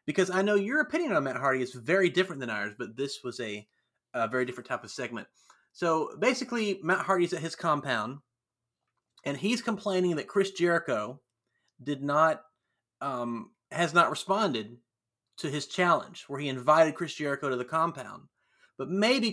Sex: male